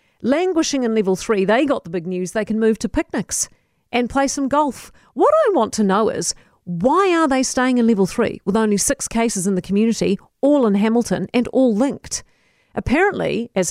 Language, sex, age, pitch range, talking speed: English, female, 50-69, 195-260 Hz, 200 wpm